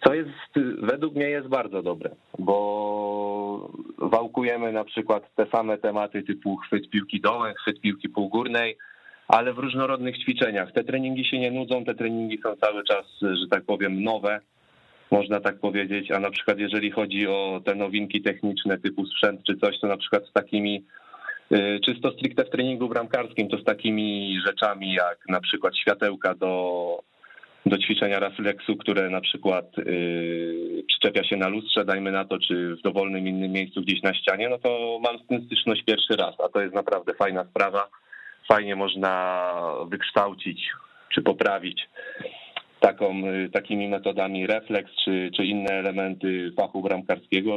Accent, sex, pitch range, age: native, male, 95-110 Hz, 30-49